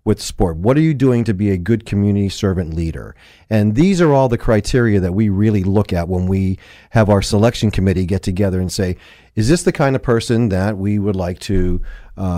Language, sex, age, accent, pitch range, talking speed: English, male, 40-59, American, 95-115 Hz, 225 wpm